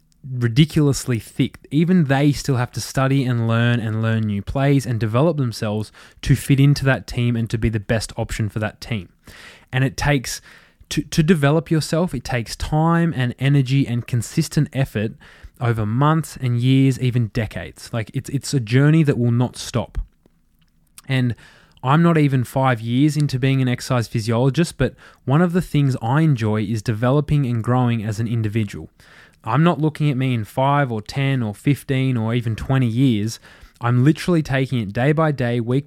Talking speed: 180 wpm